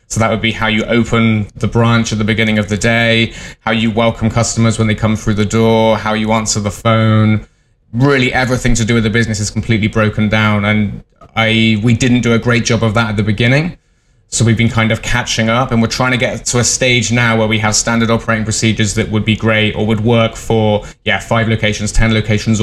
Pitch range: 110-115 Hz